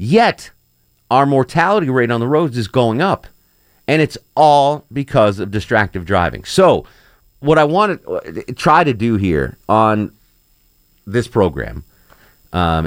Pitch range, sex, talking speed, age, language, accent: 95-120 Hz, male, 140 wpm, 40-59, English, American